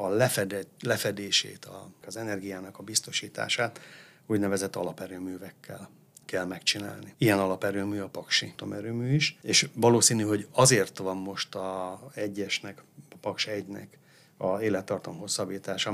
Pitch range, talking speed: 95-115 Hz, 115 wpm